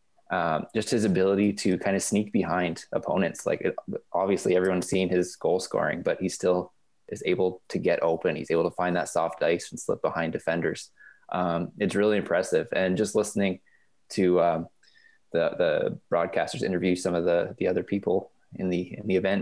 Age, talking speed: 20-39, 185 wpm